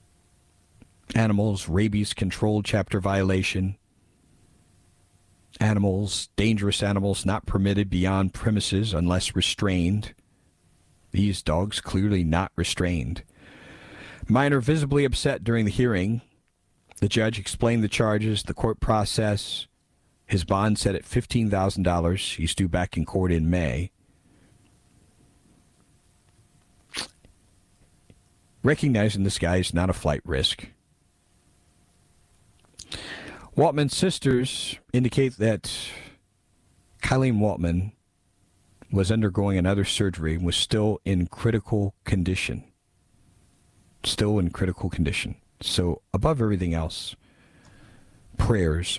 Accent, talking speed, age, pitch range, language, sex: American, 95 wpm, 50-69, 90-105 Hz, English, male